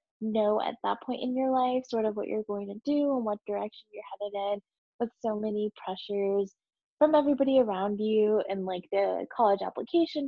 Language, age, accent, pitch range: English, 10-29, American, 200-235 Hz